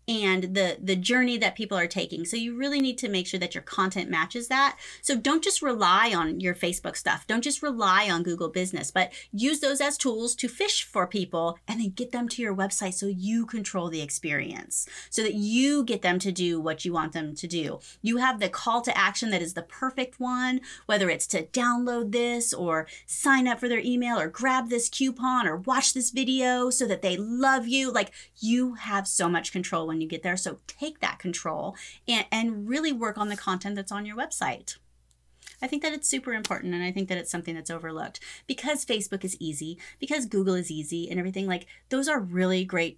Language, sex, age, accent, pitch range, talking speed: English, female, 30-49, American, 180-245 Hz, 220 wpm